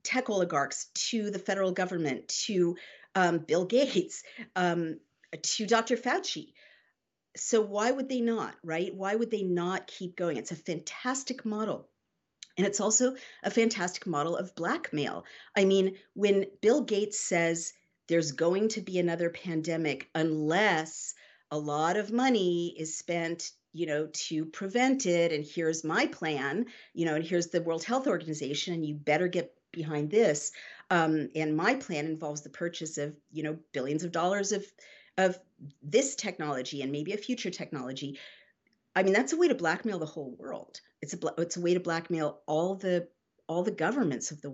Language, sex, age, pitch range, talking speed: English, female, 50-69, 155-195 Hz, 170 wpm